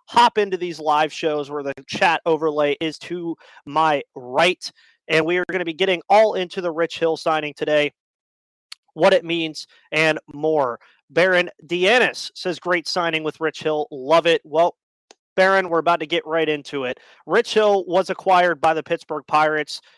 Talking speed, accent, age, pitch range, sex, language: 175 wpm, American, 30-49, 155-185 Hz, male, English